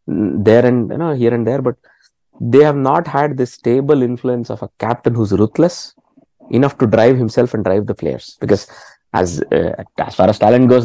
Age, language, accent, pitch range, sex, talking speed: 20-39, English, Indian, 95-125 Hz, male, 200 wpm